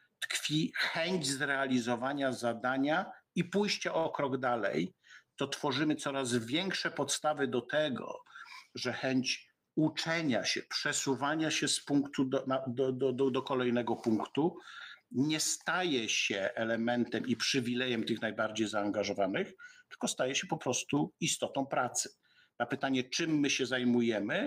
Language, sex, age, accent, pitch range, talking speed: Polish, male, 50-69, native, 120-155 Hz, 125 wpm